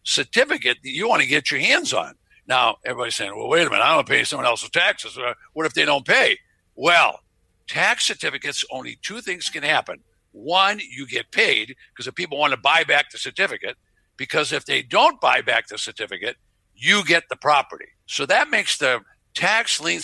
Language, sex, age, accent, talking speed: English, male, 60-79, American, 200 wpm